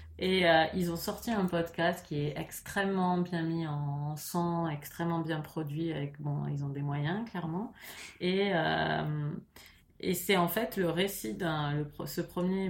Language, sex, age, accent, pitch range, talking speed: French, female, 30-49, French, 150-180 Hz, 170 wpm